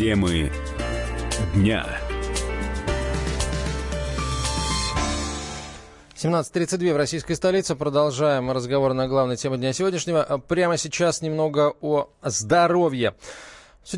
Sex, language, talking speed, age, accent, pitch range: male, Russian, 80 wpm, 20-39, native, 120-170 Hz